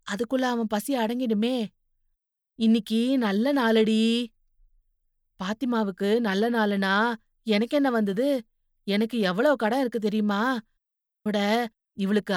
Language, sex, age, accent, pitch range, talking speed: Tamil, female, 30-49, native, 205-260 Hz, 90 wpm